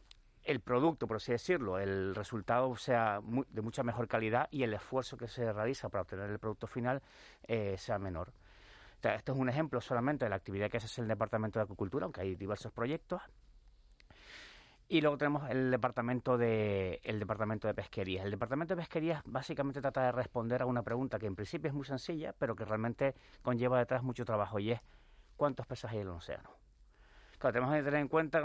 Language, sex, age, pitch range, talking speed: Spanish, male, 40-59, 110-135 Hz, 200 wpm